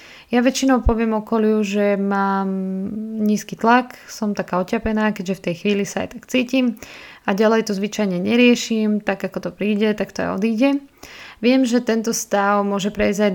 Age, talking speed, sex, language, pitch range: 20-39, 175 wpm, female, Slovak, 190-220 Hz